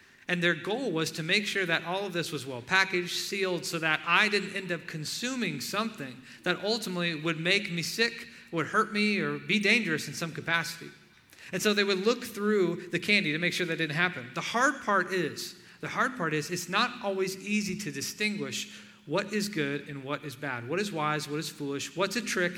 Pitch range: 150-200 Hz